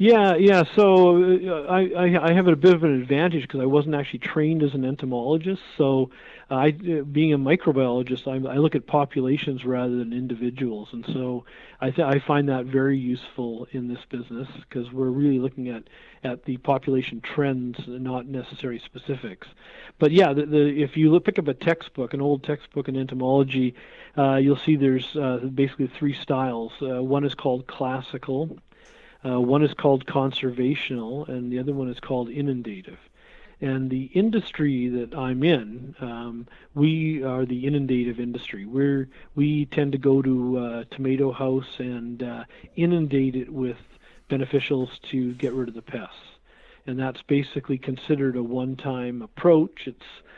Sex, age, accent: male, 40-59, American